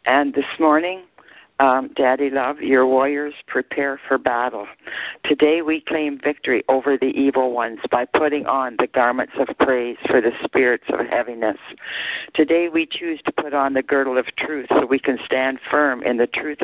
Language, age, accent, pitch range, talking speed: English, 60-79, American, 130-150 Hz, 175 wpm